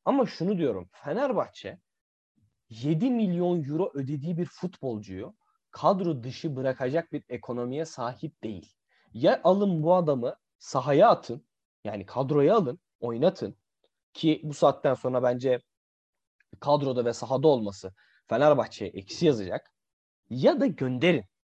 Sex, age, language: male, 30-49, Turkish